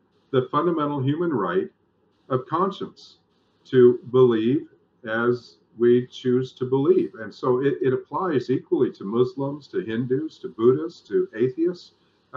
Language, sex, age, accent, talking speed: English, male, 50-69, American, 130 wpm